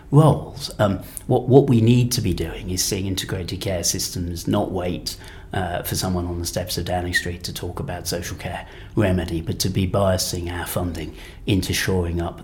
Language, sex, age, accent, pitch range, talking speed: English, male, 40-59, British, 90-110 Hz, 195 wpm